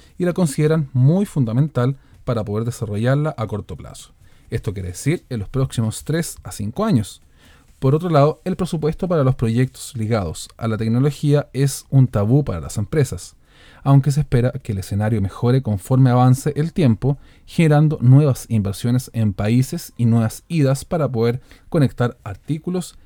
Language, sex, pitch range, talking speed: Spanish, male, 110-145 Hz, 160 wpm